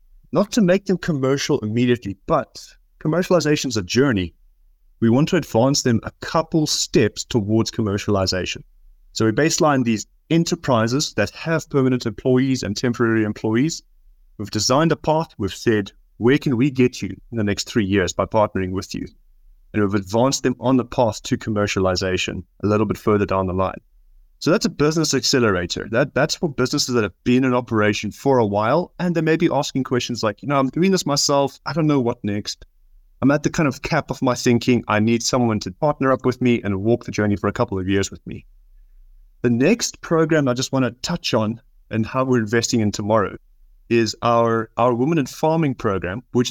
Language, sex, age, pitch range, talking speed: English, male, 30-49, 105-140 Hz, 200 wpm